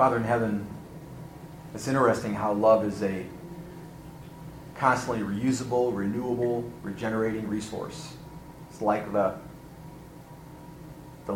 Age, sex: 30-49, male